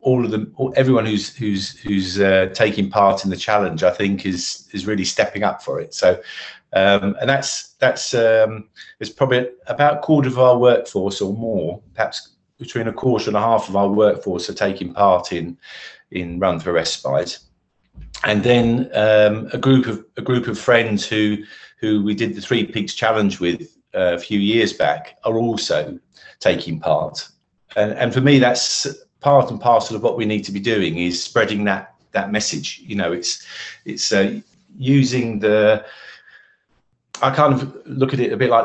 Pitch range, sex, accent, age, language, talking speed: 100-125 Hz, male, British, 50-69, English, 185 wpm